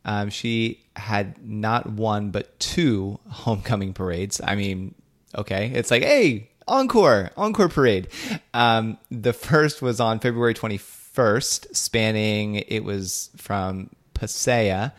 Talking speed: 120 wpm